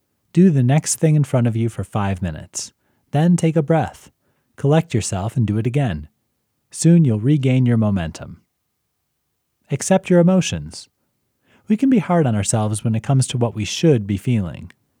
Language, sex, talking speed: English, male, 175 wpm